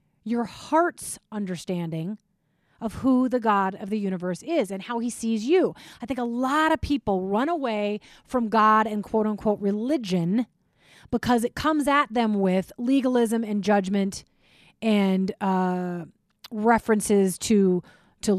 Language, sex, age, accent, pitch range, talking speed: English, female, 30-49, American, 195-245 Hz, 140 wpm